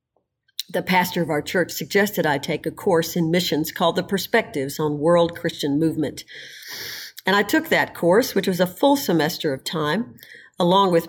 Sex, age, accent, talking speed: female, 50-69, American, 180 wpm